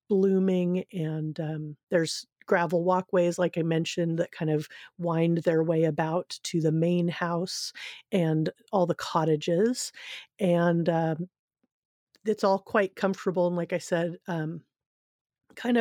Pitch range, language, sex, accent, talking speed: 165-185 Hz, English, female, American, 135 wpm